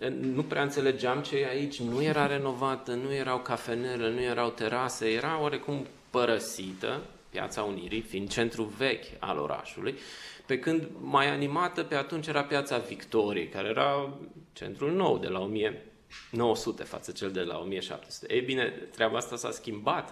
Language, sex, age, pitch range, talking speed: Romanian, male, 20-39, 110-140 Hz, 155 wpm